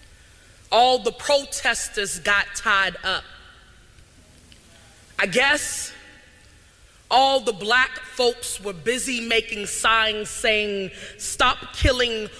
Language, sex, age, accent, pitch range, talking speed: English, female, 30-49, American, 220-290 Hz, 90 wpm